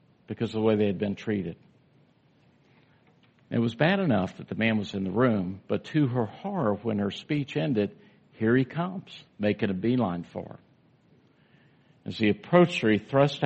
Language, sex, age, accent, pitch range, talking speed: English, male, 50-69, American, 100-135 Hz, 185 wpm